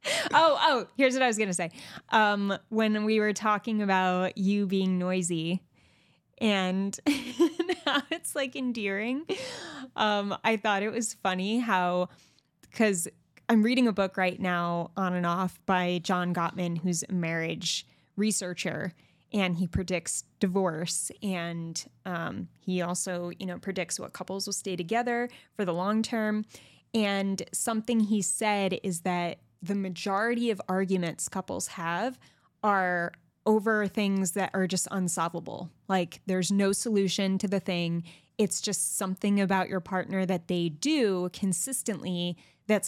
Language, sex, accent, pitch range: English, female, American, 180-220 Hz